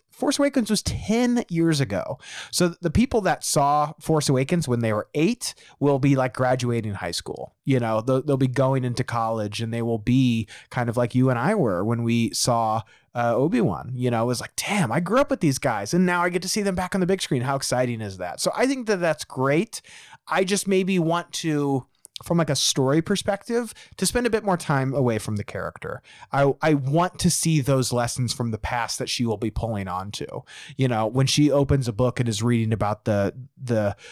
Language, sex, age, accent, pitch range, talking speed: English, male, 30-49, American, 120-170 Hz, 230 wpm